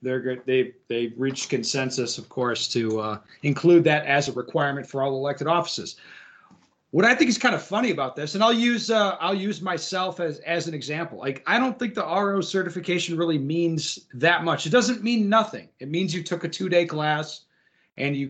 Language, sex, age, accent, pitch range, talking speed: English, male, 30-49, American, 135-175 Hz, 210 wpm